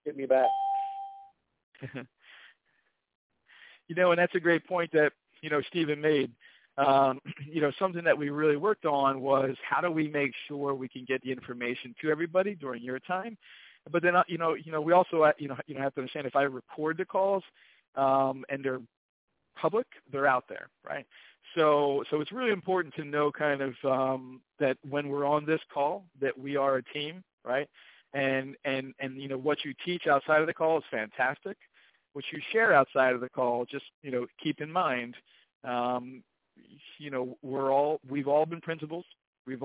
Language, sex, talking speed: English, male, 190 wpm